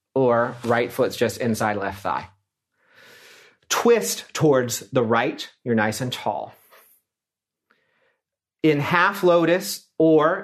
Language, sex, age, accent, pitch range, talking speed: English, male, 40-59, American, 115-150 Hz, 110 wpm